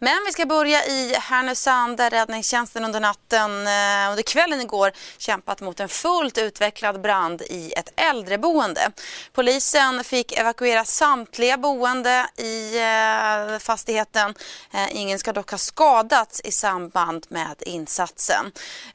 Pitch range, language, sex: 200-250 Hz, Swedish, female